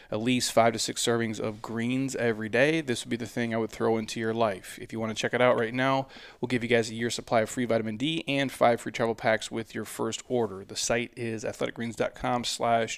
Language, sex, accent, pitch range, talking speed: English, male, American, 115-130 Hz, 255 wpm